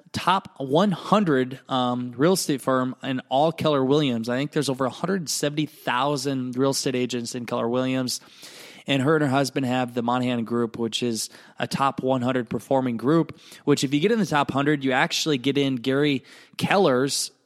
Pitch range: 125-150 Hz